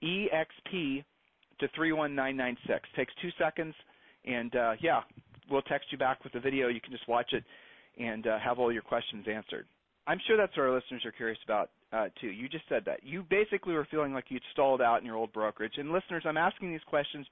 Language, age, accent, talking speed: English, 40-59, American, 225 wpm